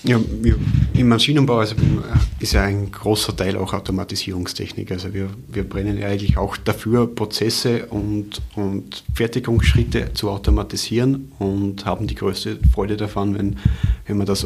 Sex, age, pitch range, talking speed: male, 30-49, 95-110 Hz, 140 wpm